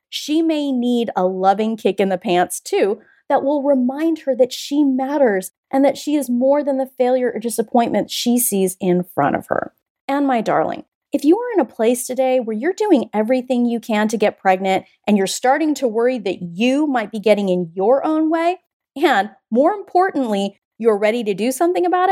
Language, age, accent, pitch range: English, 30-49, American, 195-275 Hz